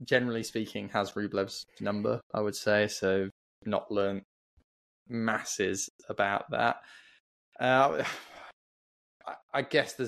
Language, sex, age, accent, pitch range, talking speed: English, male, 20-39, British, 100-120 Hz, 105 wpm